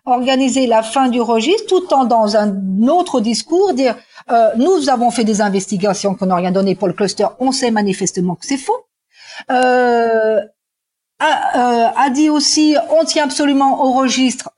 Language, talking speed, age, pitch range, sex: French, 175 wpm, 50-69, 225-310 Hz, female